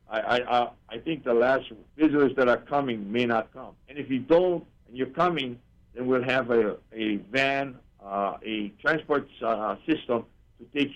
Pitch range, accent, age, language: 120-145 Hz, American, 60-79, English